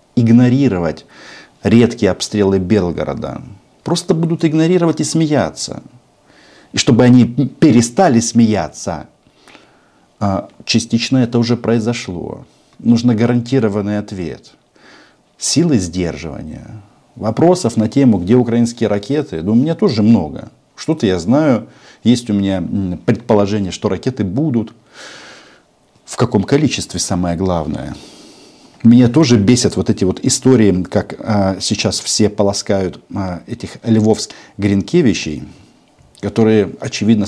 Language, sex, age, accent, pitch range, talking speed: Russian, male, 50-69, native, 100-125 Hz, 105 wpm